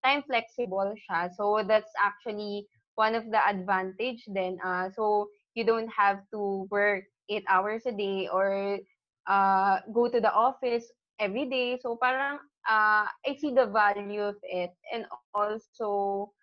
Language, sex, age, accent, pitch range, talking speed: Filipino, female, 20-39, native, 190-220 Hz, 150 wpm